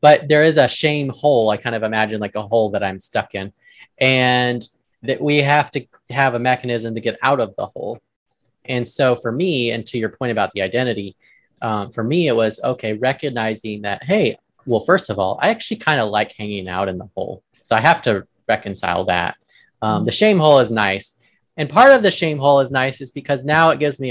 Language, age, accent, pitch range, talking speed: English, 30-49, American, 105-135 Hz, 225 wpm